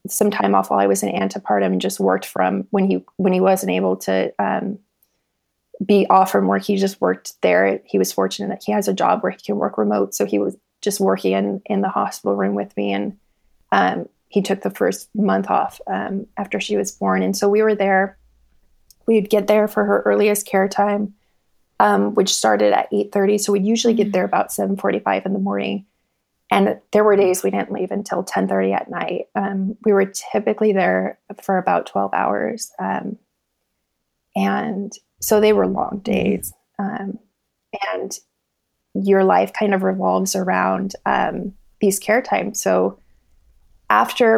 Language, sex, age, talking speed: English, female, 20-39, 185 wpm